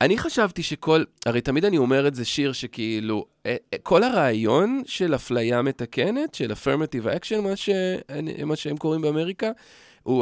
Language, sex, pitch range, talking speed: Hebrew, male, 135-225 Hz, 155 wpm